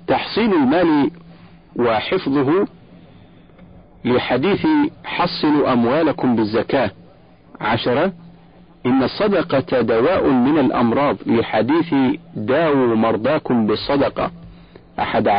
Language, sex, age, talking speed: Arabic, male, 50-69, 70 wpm